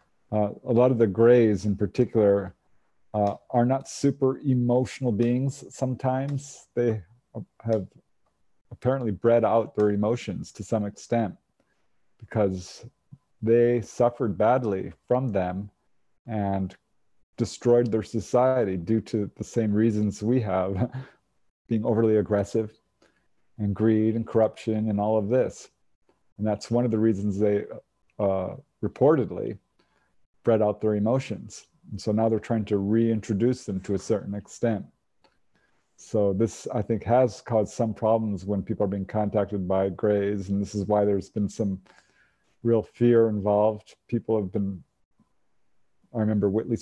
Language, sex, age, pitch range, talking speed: English, male, 40-59, 105-120 Hz, 140 wpm